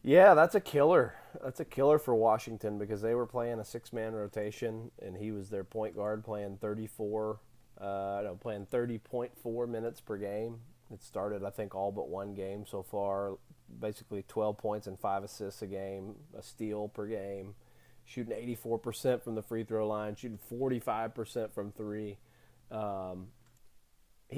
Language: English